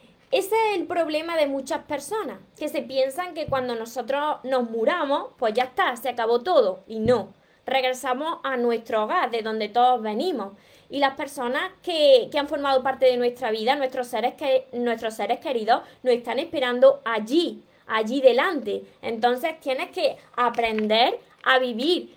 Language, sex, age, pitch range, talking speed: Spanish, female, 20-39, 245-325 Hz, 155 wpm